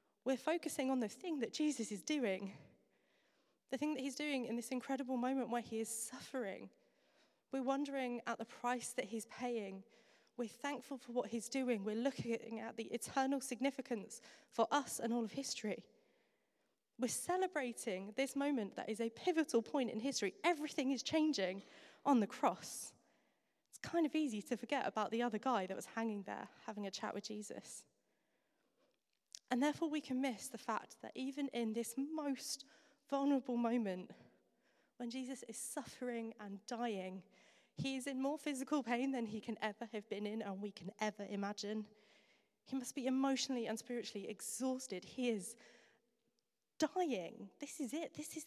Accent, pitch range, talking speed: British, 220-280 Hz, 170 wpm